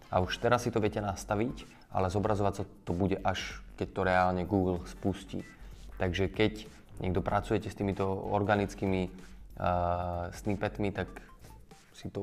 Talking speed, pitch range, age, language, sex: 145 wpm, 90-105 Hz, 20-39, Slovak, male